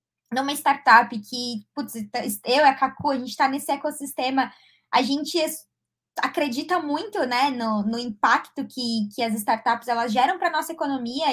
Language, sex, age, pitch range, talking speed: Portuguese, female, 20-39, 230-295 Hz, 170 wpm